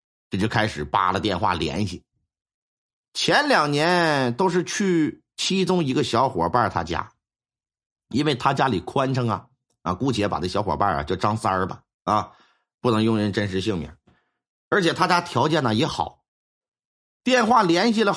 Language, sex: Chinese, male